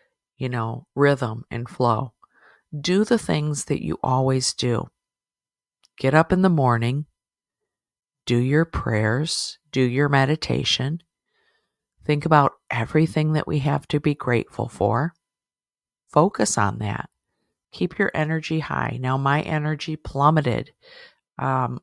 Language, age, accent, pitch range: English, 50-69, American, 130-155 Hz